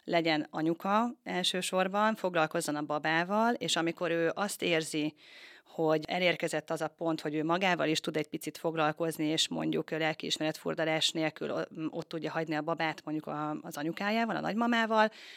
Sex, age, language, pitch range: female, 30-49, Hungarian, 155-180 Hz